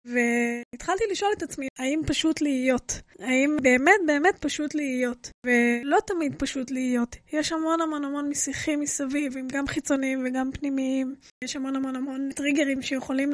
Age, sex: 20-39, female